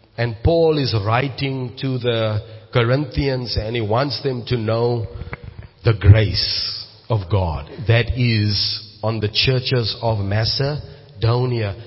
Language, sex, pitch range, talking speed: English, male, 105-135 Hz, 120 wpm